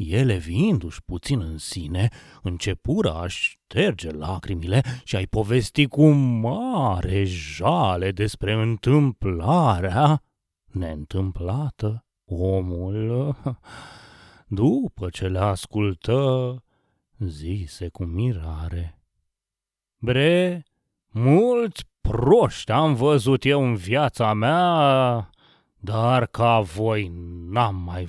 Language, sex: Romanian, male